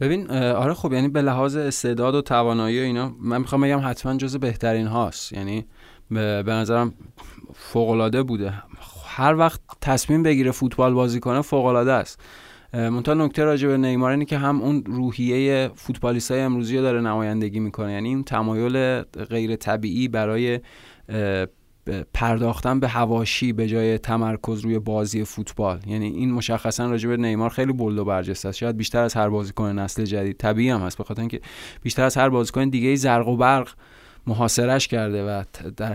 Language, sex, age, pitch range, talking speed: Persian, male, 20-39, 110-130 Hz, 170 wpm